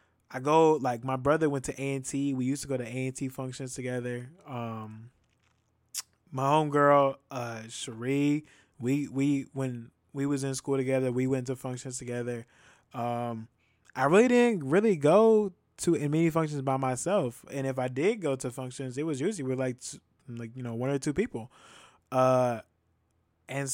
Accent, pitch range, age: American, 125-145 Hz, 20-39